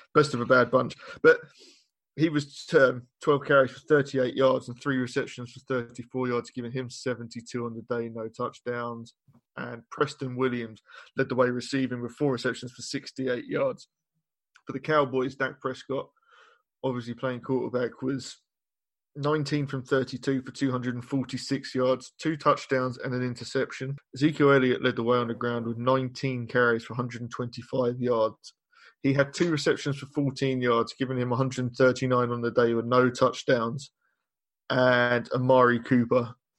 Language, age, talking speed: English, 20-39, 155 wpm